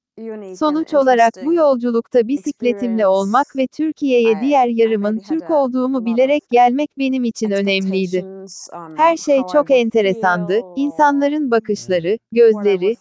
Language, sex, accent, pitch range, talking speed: Turkish, female, native, 220-275 Hz, 110 wpm